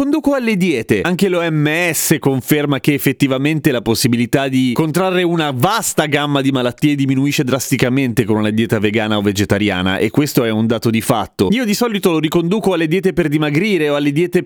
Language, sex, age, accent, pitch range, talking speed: Italian, male, 30-49, native, 115-170 Hz, 185 wpm